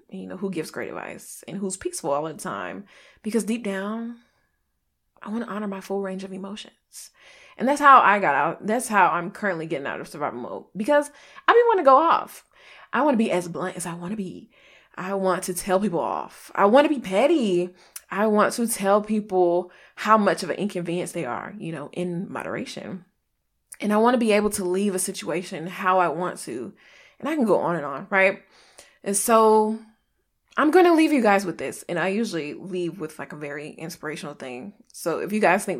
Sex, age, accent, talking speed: female, 20-39, American, 220 wpm